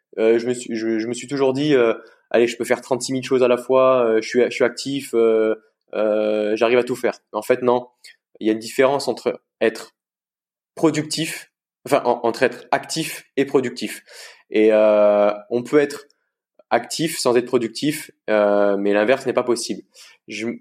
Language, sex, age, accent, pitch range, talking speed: French, male, 20-39, French, 110-140 Hz, 195 wpm